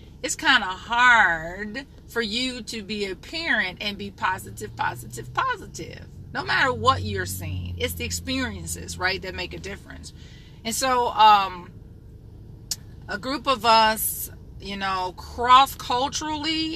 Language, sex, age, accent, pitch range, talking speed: English, female, 30-49, American, 155-230 Hz, 140 wpm